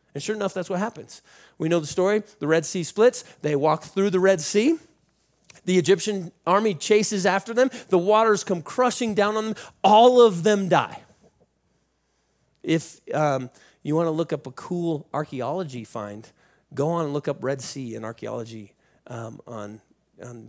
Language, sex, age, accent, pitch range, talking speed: English, male, 30-49, American, 125-180 Hz, 175 wpm